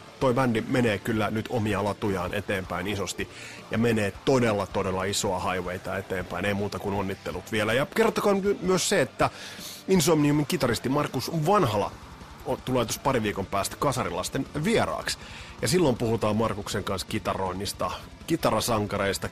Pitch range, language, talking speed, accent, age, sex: 95-130 Hz, Finnish, 135 wpm, native, 30-49, male